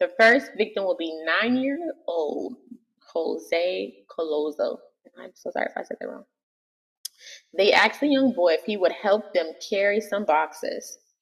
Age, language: 20-39, English